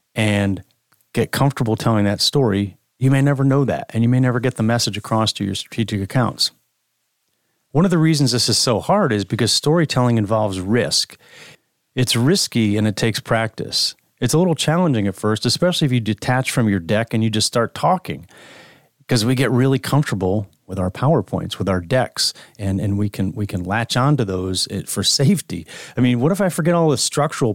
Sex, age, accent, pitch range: male, 40-59, American, 105-135 Hz